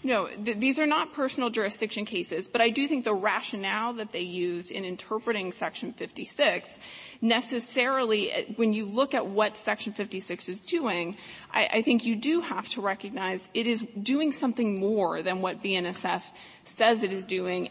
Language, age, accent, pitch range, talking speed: English, 30-49, American, 195-240 Hz, 170 wpm